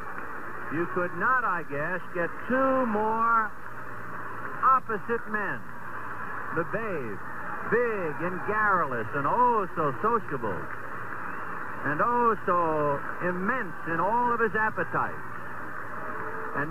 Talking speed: 105 wpm